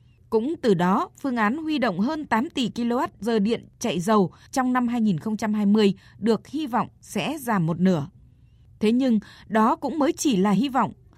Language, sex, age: Vietnamese, female, 20-39